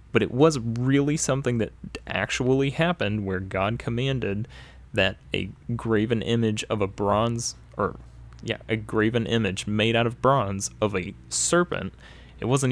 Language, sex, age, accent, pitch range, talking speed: English, male, 20-39, American, 95-115 Hz, 150 wpm